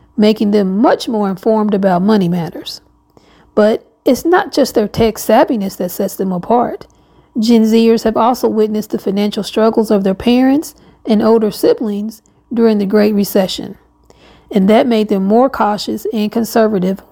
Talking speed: 160 wpm